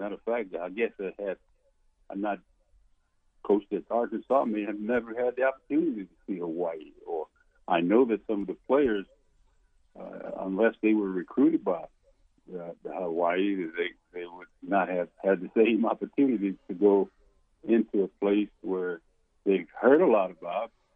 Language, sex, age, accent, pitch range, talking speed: English, male, 60-79, American, 100-140 Hz, 160 wpm